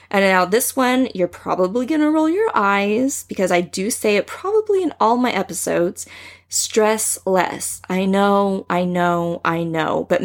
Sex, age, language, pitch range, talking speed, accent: female, 20-39, English, 170-200 Hz, 175 wpm, American